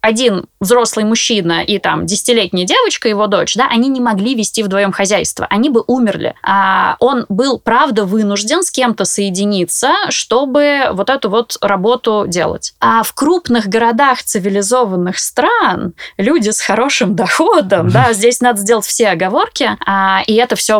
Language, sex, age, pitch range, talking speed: Russian, female, 20-39, 190-245 Hz, 155 wpm